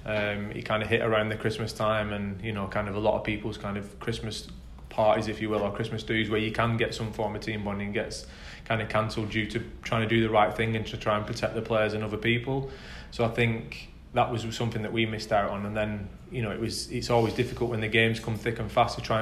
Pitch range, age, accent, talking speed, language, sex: 105-115 Hz, 20-39, British, 275 wpm, English, male